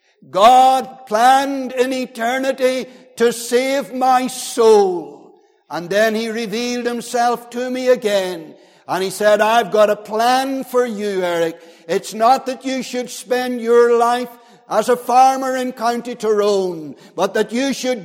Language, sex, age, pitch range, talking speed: English, male, 60-79, 205-250 Hz, 145 wpm